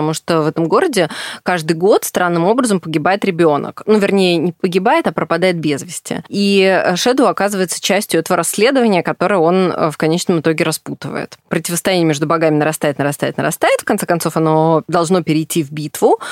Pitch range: 155-190 Hz